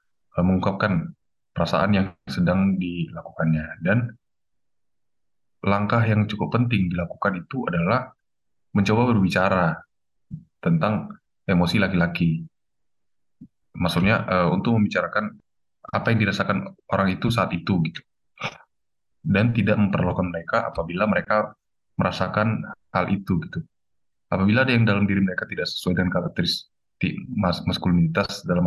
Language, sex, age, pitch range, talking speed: Indonesian, male, 20-39, 90-115 Hz, 110 wpm